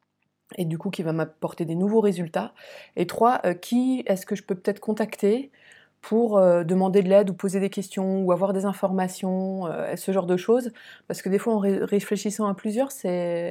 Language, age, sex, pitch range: French, 20-39, female, 185-230 Hz